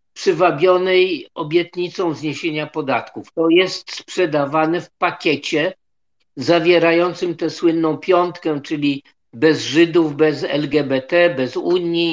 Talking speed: 100 wpm